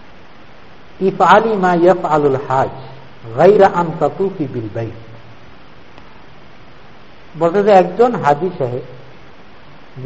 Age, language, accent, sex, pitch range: 60-79, Bengali, native, male, 140-195 Hz